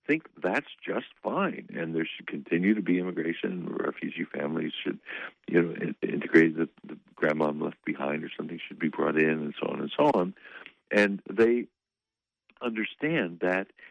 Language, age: English, 60-79